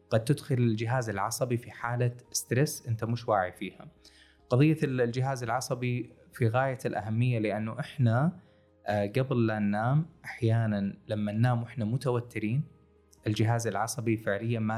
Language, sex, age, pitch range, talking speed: Arabic, male, 20-39, 105-125 Hz, 125 wpm